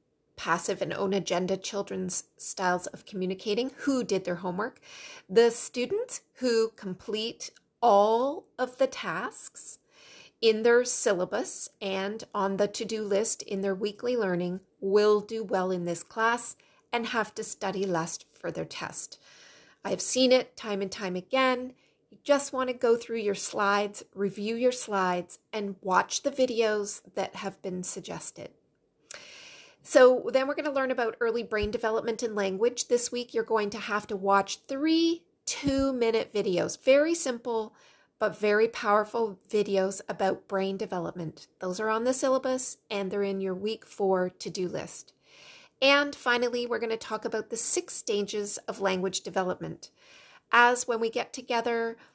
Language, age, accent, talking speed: English, 30-49, American, 155 wpm